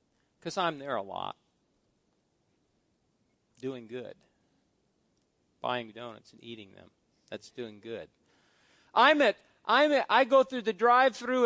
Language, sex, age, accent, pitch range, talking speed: English, male, 50-69, American, 175-275 Hz, 125 wpm